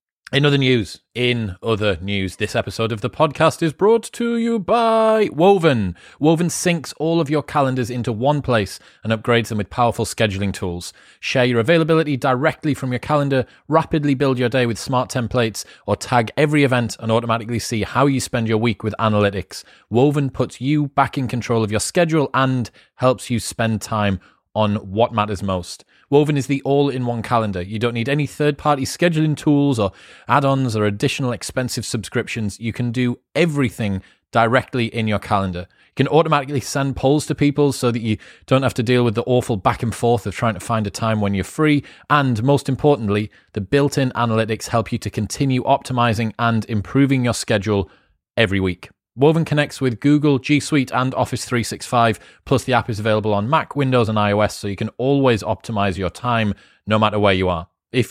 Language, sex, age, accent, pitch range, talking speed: English, male, 30-49, British, 110-140 Hz, 190 wpm